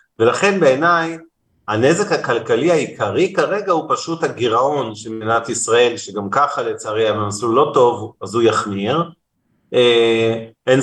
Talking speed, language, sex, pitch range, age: 115 wpm, Hebrew, male, 110-120 Hz, 40-59